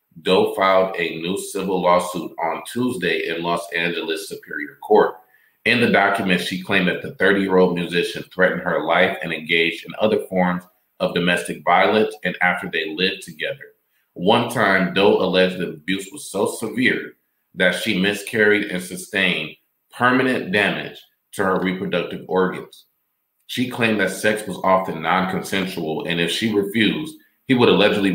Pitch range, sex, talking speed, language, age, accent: 85-100 Hz, male, 155 wpm, English, 40-59, American